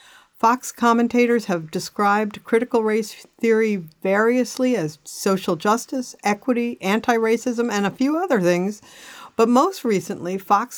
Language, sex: English, female